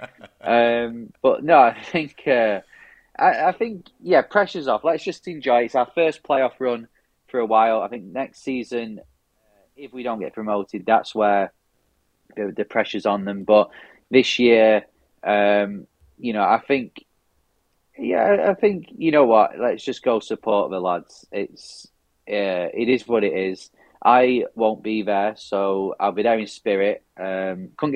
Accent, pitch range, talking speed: British, 100-130 Hz, 170 wpm